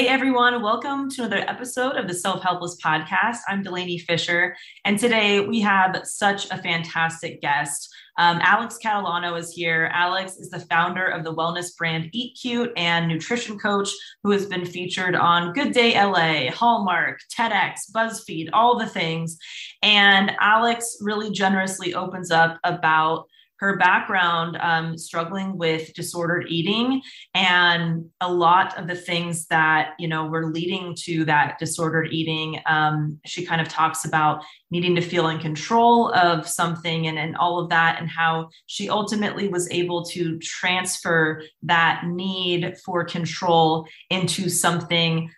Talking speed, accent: 150 wpm, American